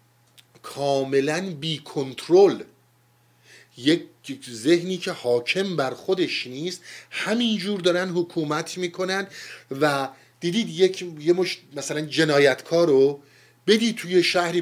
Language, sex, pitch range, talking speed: Persian, male, 120-165 Hz, 100 wpm